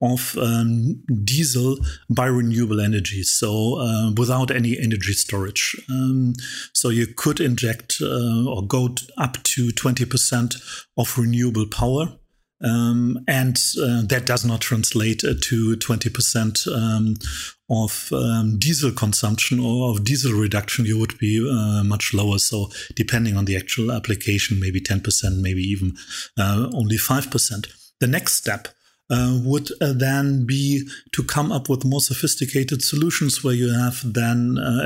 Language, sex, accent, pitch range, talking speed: English, male, German, 115-130 Hz, 145 wpm